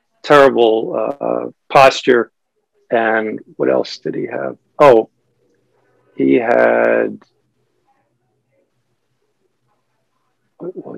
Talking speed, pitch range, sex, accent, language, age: 70 wpm, 110-140 Hz, male, American, English, 50-69